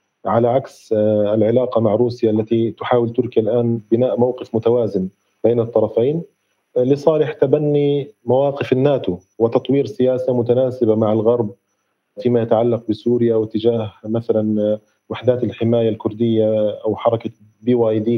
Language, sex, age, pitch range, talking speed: Arabic, male, 40-59, 115-130 Hz, 110 wpm